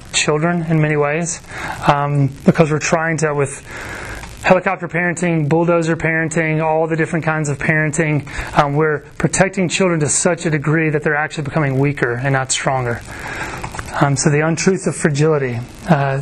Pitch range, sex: 150-170 Hz, male